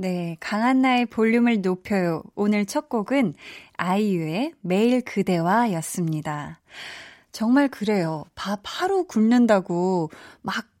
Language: Korean